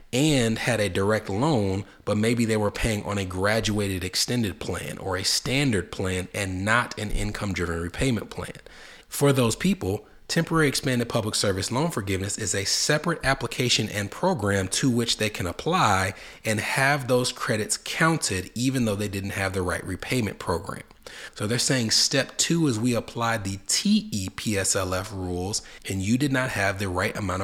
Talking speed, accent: 175 wpm, American